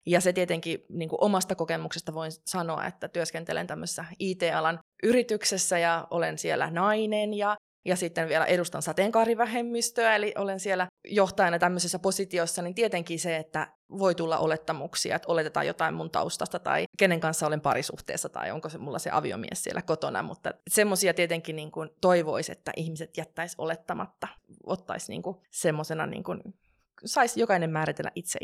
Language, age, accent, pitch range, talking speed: Finnish, 20-39, native, 165-205 Hz, 150 wpm